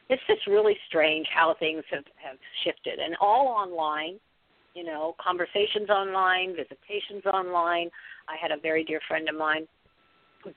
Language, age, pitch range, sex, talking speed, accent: English, 50-69, 155-225 Hz, female, 155 wpm, American